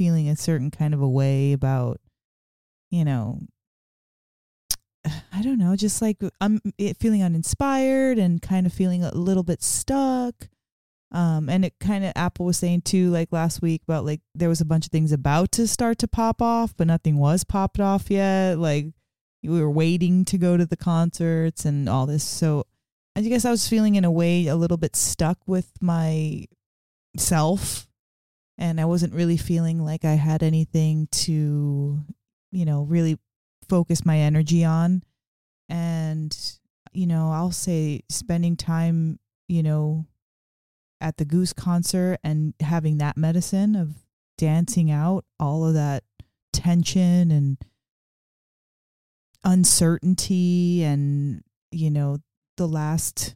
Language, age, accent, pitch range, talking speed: English, 20-39, American, 150-180 Hz, 150 wpm